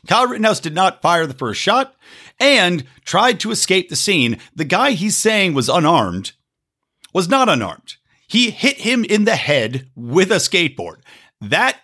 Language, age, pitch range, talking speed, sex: English, 50-69, 150-245 Hz, 165 wpm, male